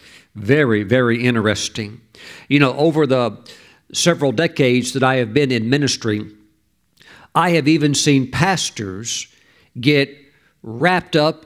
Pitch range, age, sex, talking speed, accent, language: 130-175 Hz, 50-69, male, 120 wpm, American, English